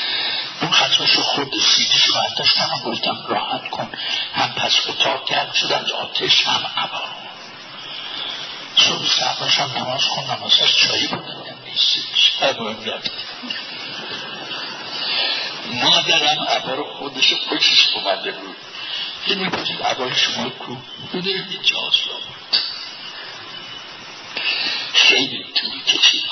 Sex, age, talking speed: male, 60-79, 110 wpm